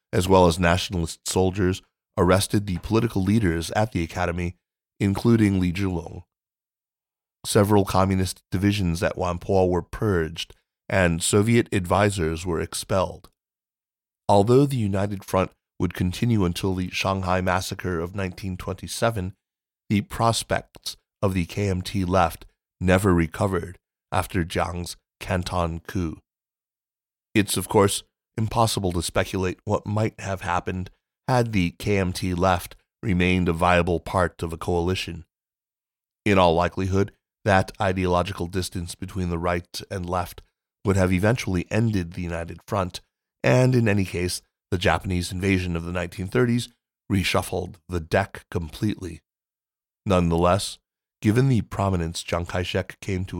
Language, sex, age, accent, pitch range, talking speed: English, male, 30-49, American, 90-100 Hz, 125 wpm